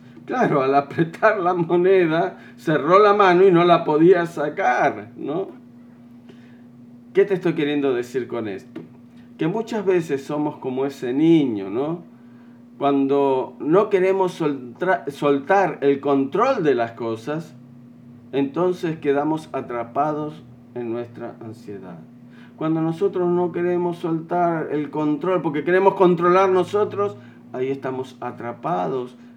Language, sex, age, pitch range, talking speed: Spanish, male, 50-69, 125-185 Hz, 120 wpm